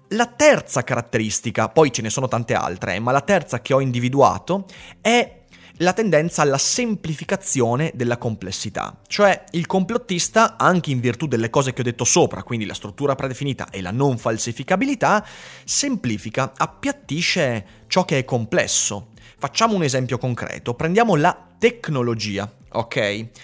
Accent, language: native, Italian